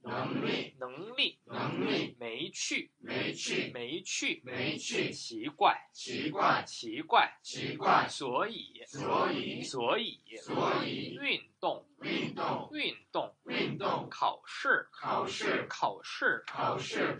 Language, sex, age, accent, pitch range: Korean, male, 20-39, Chinese, 155-255 Hz